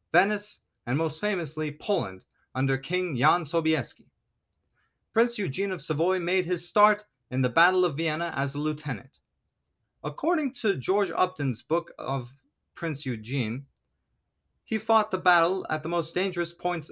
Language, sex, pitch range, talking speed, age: English, male, 120-175 Hz, 145 wpm, 30-49